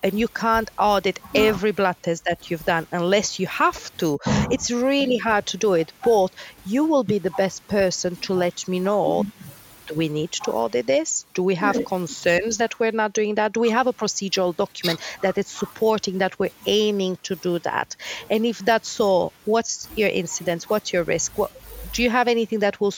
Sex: female